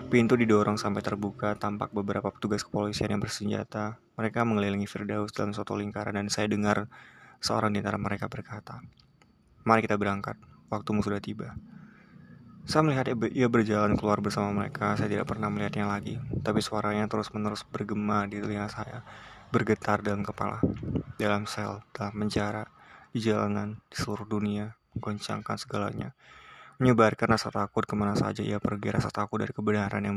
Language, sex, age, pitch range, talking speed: Indonesian, male, 20-39, 105-110 Hz, 150 wpm